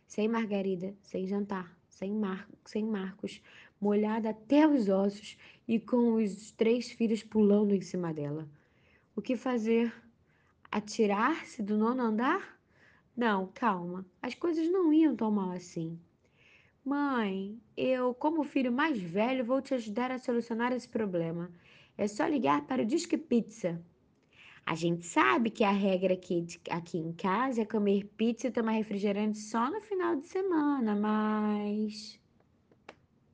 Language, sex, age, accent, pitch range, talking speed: Portuguese, female, 10-29, Brazilian, 180-255 Hz, 140 wpm